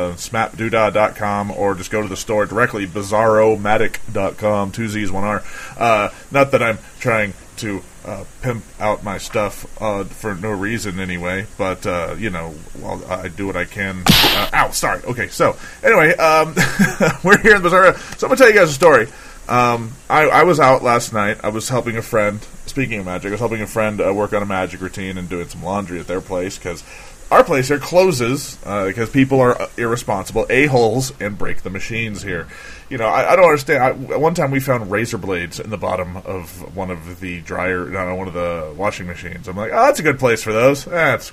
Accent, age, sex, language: American, 30-49, male, English